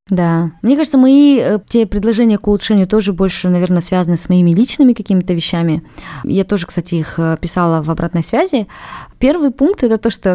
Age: 20-39